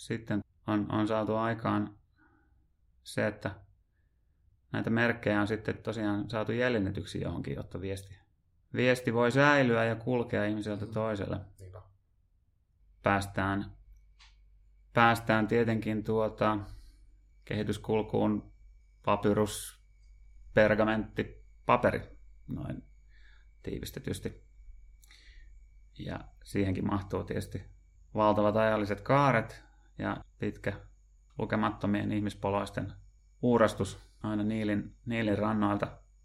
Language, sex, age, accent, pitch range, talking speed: Finnish, male, 30-49, native, 100-110 Hz, 85 wpm